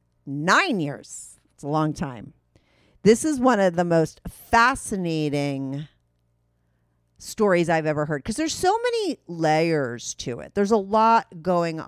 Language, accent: English, American